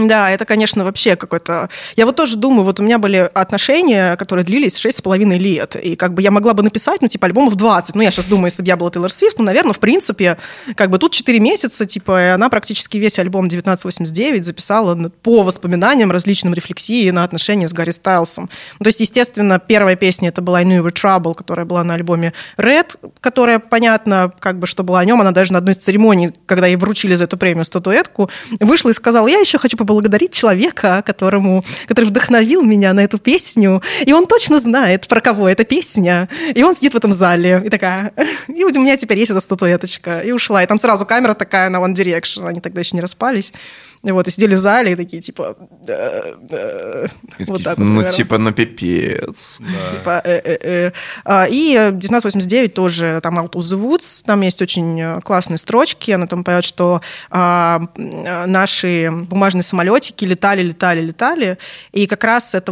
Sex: female